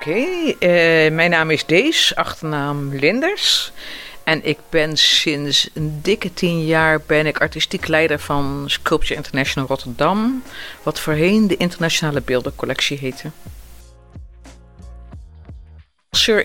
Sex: female